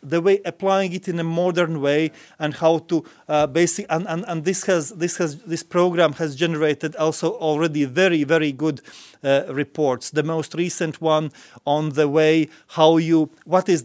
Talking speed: 180 wpm